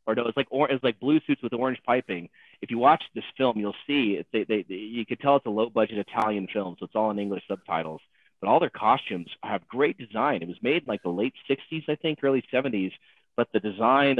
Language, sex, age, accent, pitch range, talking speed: English, male, 30-49, American, 100-125 Hz, 240 wpm